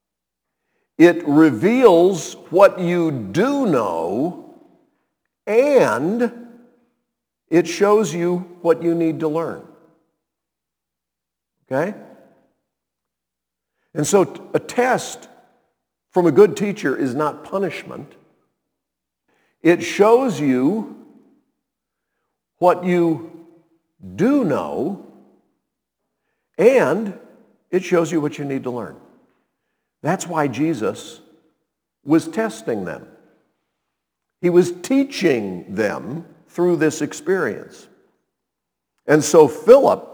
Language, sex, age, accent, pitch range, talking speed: English, male, 50-69, American, 160-225 Hz, 90 wpm